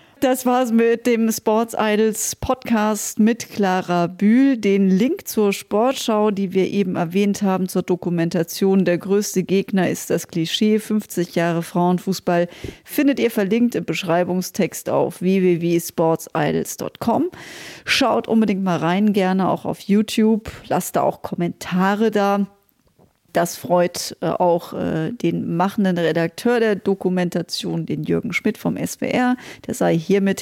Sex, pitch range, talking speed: female, 180-225 Hz, 135 wpm